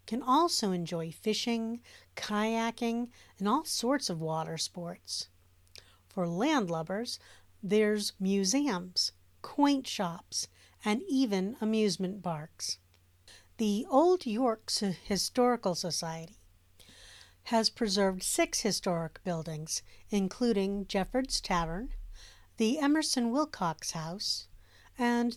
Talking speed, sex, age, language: 95 wpm, female, 50-69, English